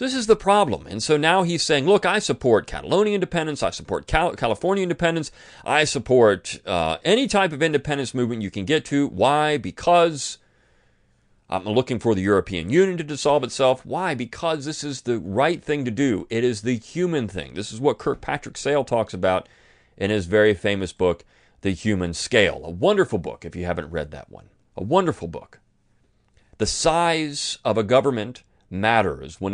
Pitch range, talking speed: 95-145 Hz, 180 wpm